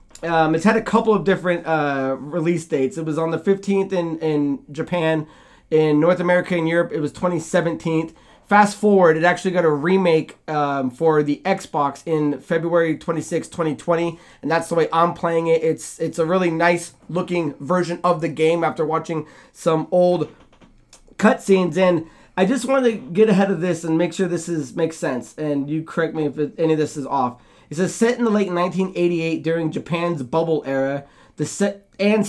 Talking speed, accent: 195 wpm, American